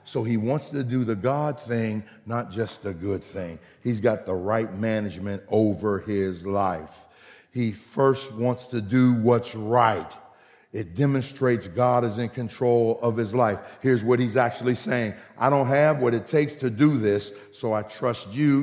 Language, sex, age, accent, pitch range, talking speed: English, male, 50-69, American, 115-155 Hz, 175 wpm